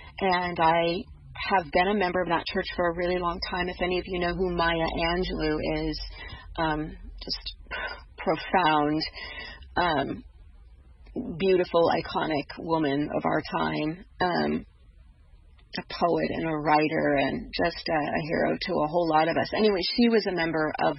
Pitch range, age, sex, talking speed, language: 160-185 Hz, 40-59, female, 160 wpm, English